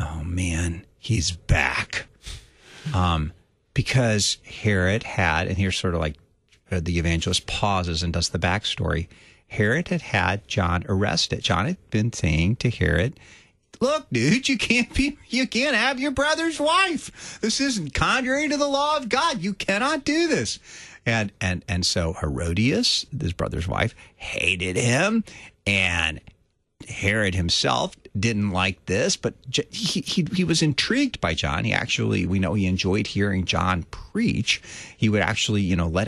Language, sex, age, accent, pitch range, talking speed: English, male, 40-59, American, 90-145 Hz, 155 wpm